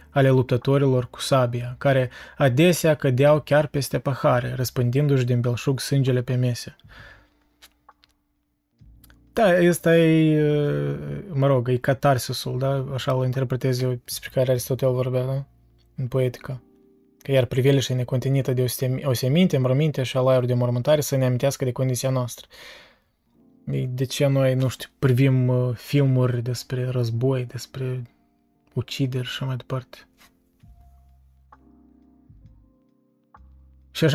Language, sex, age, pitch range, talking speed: Romanian, male, 20-39, 125-145 Hz, 115 wpm